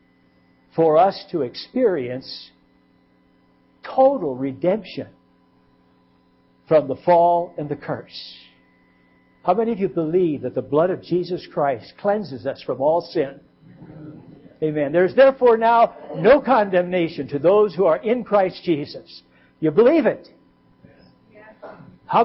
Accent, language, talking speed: American, English, 125 wpm